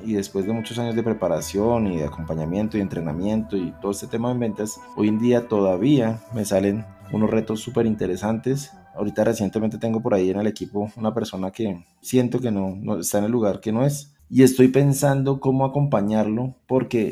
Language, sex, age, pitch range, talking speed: Spanish, male, 20-39, 105-135 Hz, 195 wpm